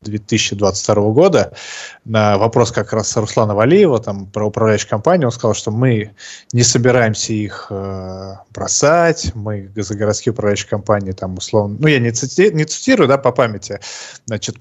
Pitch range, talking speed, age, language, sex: 105-125 Hz, 140 wpm, 20-39, Russian, male